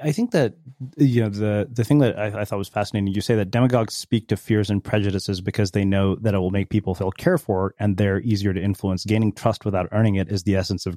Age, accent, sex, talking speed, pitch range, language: 30-49, American, male, 265 wpm, 95-115 Hz, English